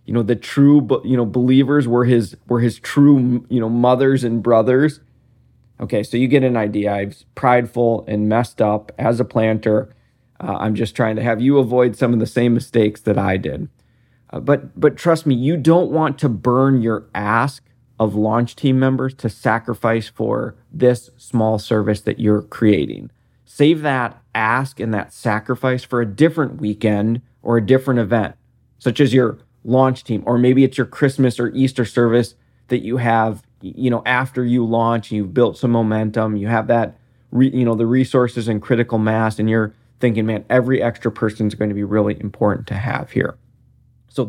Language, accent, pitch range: English, American, 110-130 Hz